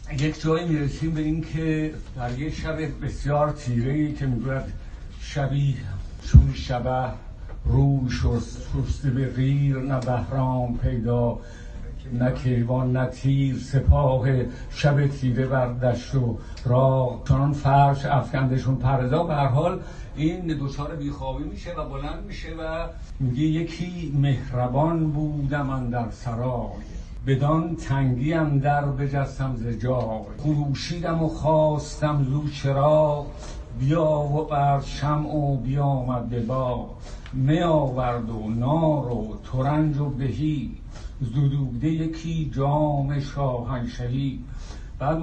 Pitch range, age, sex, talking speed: 125-150 Hz, 60-79, male, 115 wpm